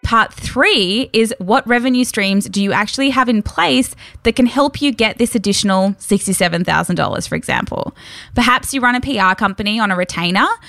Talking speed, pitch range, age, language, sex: 175 wpm, 180-240 Hz, 10-29, English, female